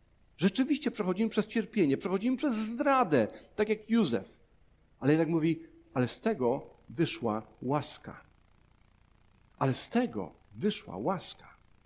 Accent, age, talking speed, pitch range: native, 50-69, 115 wpm, 135-195 Hz